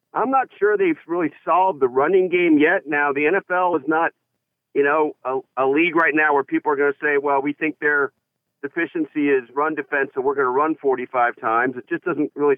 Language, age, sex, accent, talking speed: English, 50-69, male, American, 225 wpm